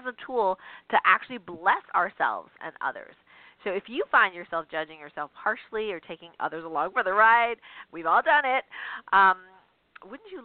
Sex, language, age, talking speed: female, English, 30-49, 170 wpm